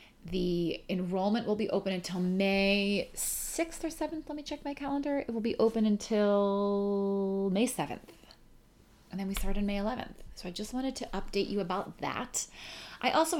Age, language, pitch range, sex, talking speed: 30-49, English, 180-225 Hz, female, 180 wpm